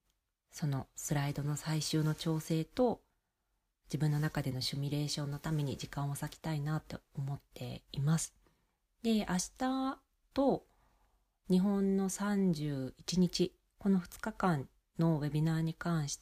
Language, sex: Japanese, female